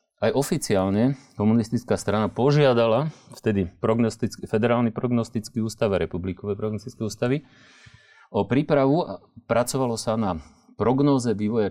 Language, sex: Slovak, male